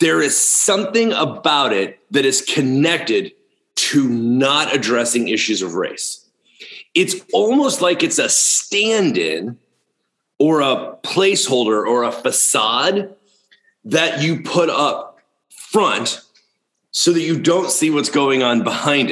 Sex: male